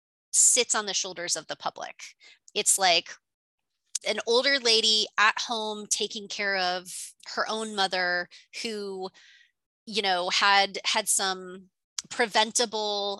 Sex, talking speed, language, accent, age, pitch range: female, 125 wpm, English, American, 30-49, 185-240 Hz